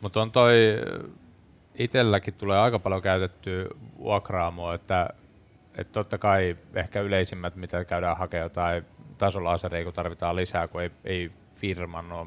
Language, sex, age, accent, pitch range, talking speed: Finnish, male, 20-39, native, 85-100 Hz, 135 wpm